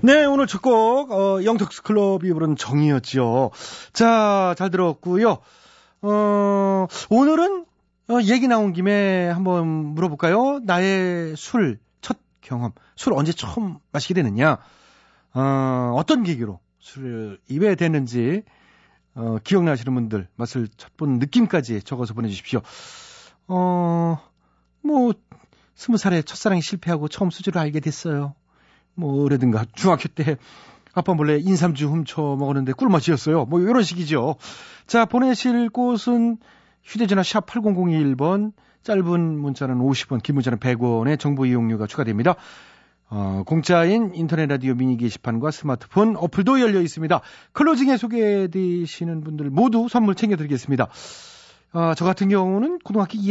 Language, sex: Korean, male